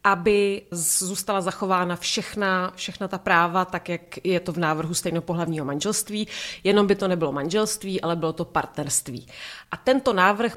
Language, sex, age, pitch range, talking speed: Czech, female, 30-49, 170-205 Hz, 150 wpm